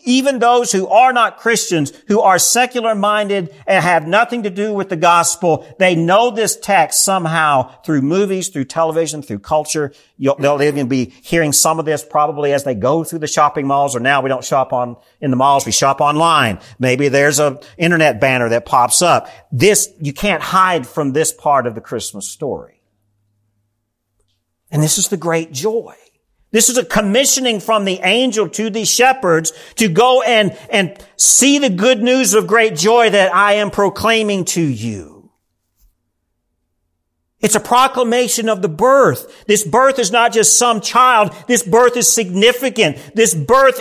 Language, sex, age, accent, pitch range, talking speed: English, male, 50-69, American, 145-230 Hz, 175 wpm